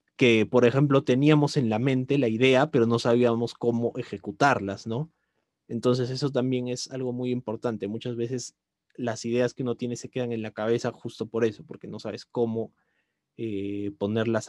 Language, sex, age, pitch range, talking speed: Spanish, male, 30-49, 115-140 Hz, 180 wpm